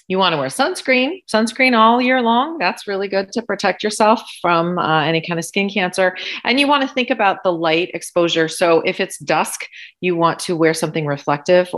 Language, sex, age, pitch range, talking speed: English, female, 30-49, 135-185 Hz, 210 wpm